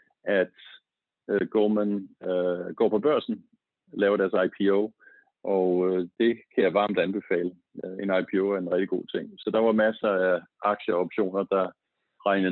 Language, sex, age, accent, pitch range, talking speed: Danish, male, 50-69, native, 90-100 Hz, 160 wpm